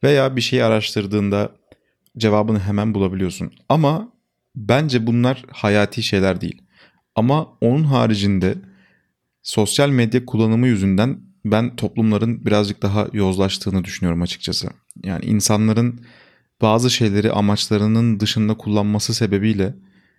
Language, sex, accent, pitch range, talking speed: Turkish, male, native, 100-115 Hz, 105 wpm